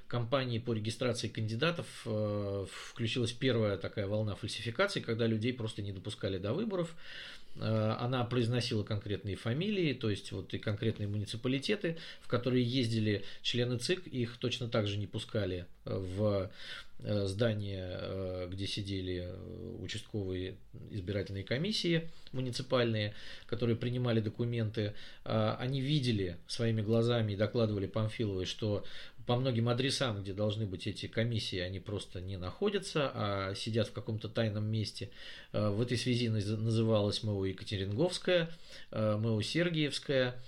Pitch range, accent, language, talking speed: 100-125 Hz, native, Russian, 120 wpm